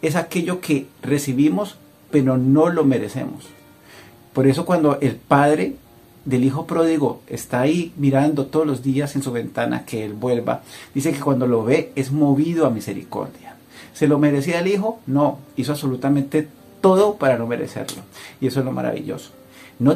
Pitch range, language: 125-155 Hz, Spanish